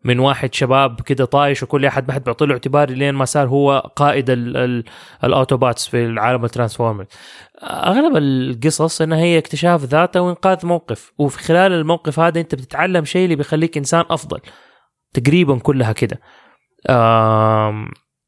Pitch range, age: 130-160 Hz, 20-39